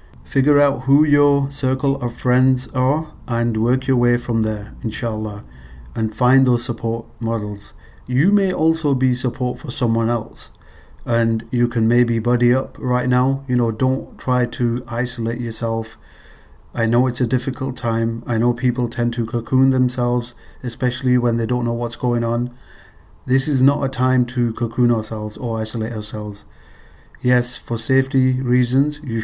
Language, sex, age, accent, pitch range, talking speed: English, male, 30-49, German, 110-130 Hz, 165 wpm